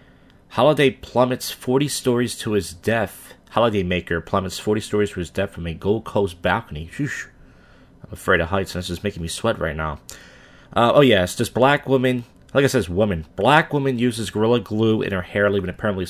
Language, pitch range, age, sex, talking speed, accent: English, 90-130 Hz, 30-49, male, 200 wpm, American